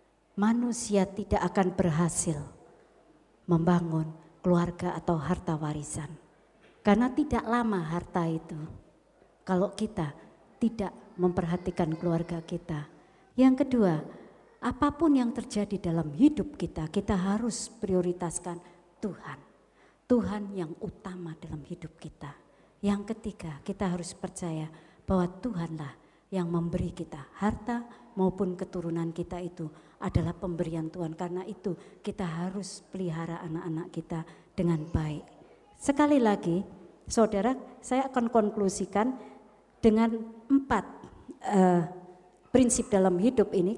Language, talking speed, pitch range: Indonesian, 105 wpm, 175-225 Hz